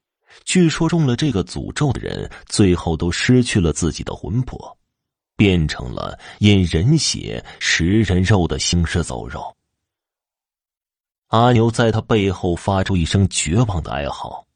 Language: Chinese